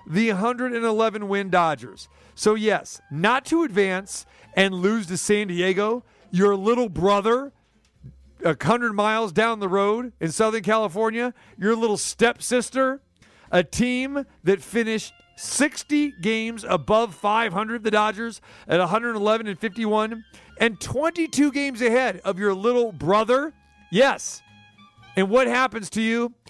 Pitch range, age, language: 185-240 Hz, 40-59, English